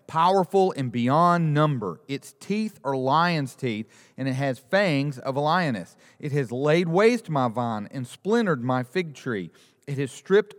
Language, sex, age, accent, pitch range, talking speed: English, male, 40-59, American, 135-190 Hz, 170 wpm